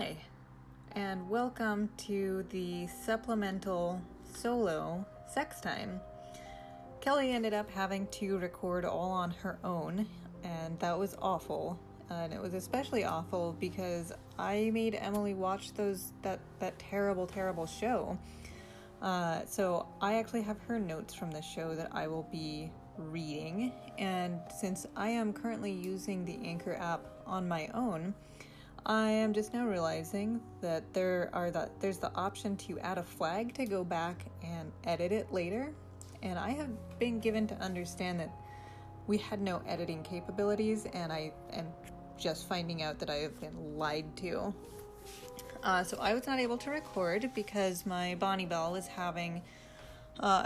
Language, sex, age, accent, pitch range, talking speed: English, female, 30-49, American, 165-210 Hz, 150 wpm